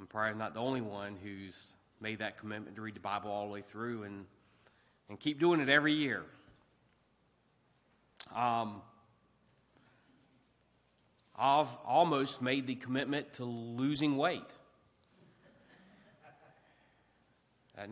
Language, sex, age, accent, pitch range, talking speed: English, male, 30-49, American, 105-135 Hz, 115 wpm